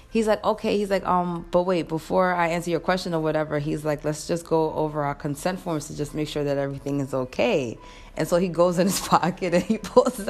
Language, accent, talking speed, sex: English, American, 245 wpm, female